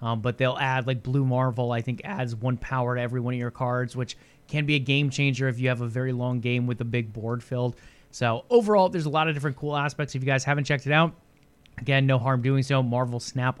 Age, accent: 20-39, American